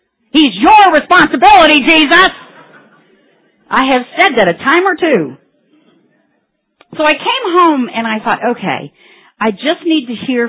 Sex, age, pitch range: female, 50-69, 180-260 Hz